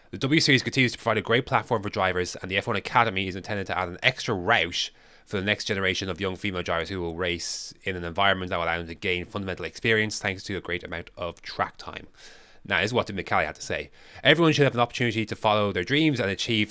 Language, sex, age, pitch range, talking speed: English, male, 20-39, 90-120 Hz, 255 wpm